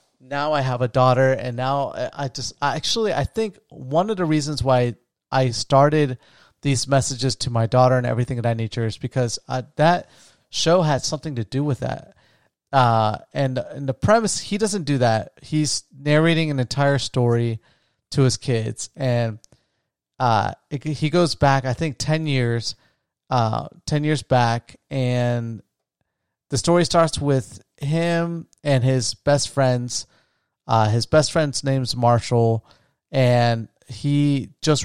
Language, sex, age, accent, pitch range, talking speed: English, male, 30-49, American, 120-150 Hz, 155 wpm